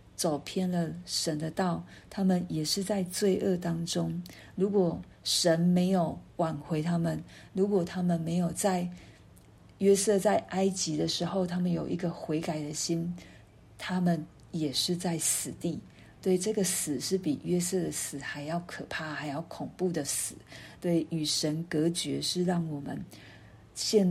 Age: 50-69